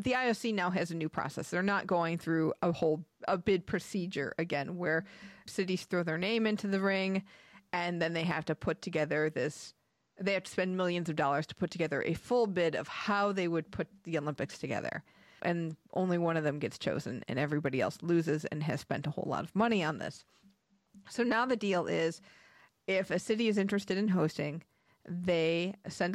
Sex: female